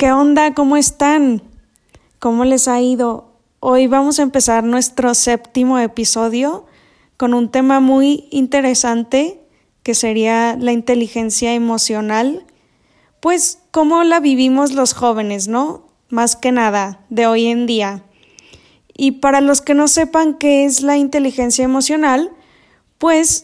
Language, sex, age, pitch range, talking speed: English, female, 10-29, 235-285 Hz, 130 wpm